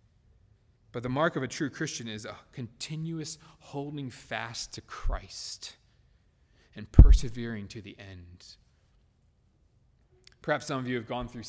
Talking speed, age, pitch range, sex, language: 135 wpm, 20-39, 105-135 Hz, male, English